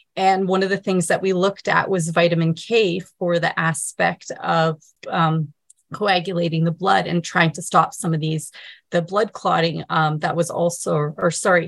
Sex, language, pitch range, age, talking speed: female, English, 170-195 Hz, 30-49, 185 wpm